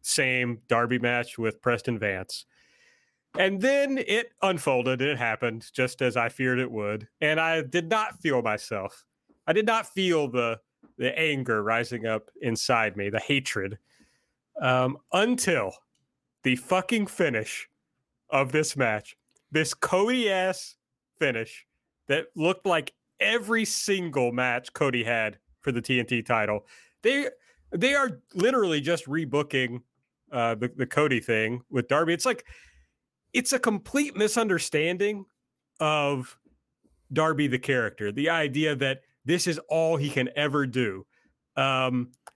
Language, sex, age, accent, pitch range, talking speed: English, male, 30-49, American, 125-185 Hz, 135 wpm